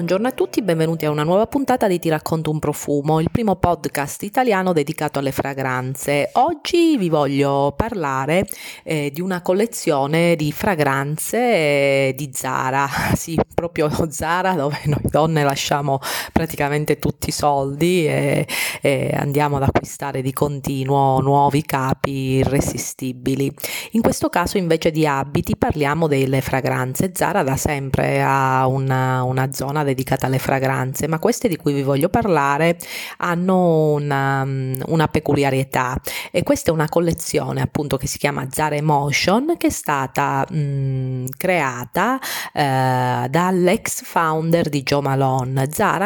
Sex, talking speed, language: female, 140 wpm, Italian